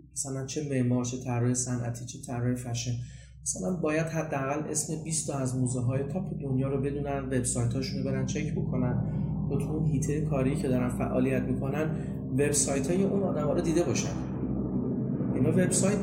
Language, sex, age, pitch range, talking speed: Persian, male, 30-49, 120-145 Hz, 175 wpm